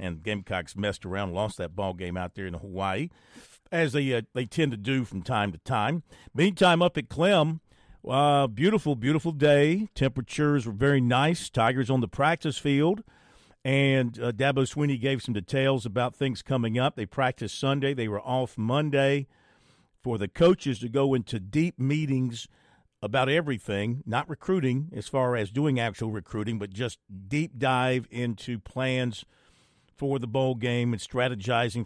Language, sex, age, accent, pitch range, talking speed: English, male, 50-69, American, 120-145 Hz, 165 wpm